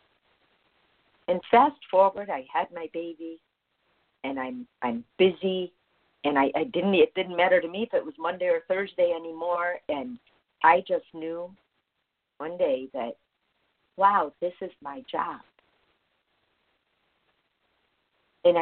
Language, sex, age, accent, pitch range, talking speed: English, female, 50-69, American, 165-225 Hz, 130 wpm